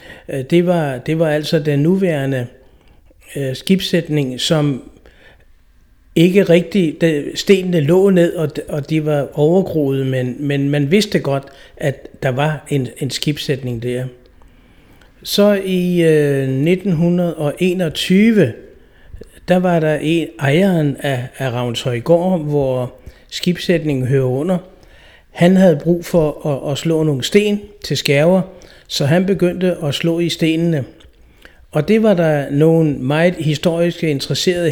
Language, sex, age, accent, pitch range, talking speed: Danish, male, 60-79, native, 140-175 Hz, 130 wpm